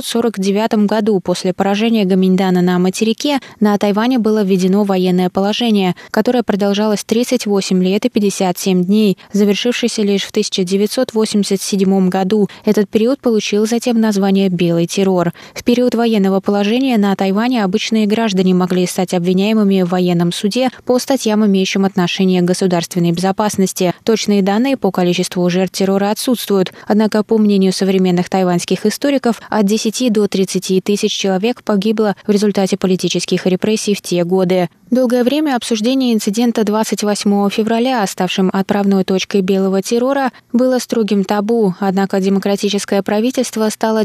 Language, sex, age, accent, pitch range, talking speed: Russian, female, 20-39, native, 190-220 Hz, 135 wpm